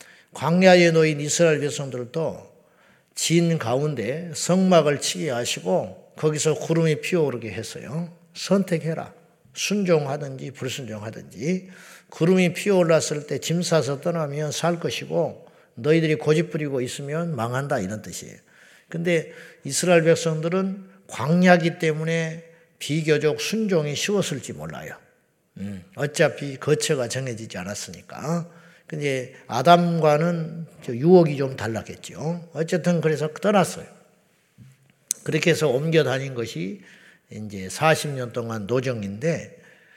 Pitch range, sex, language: 135-170 Hz, male, Korean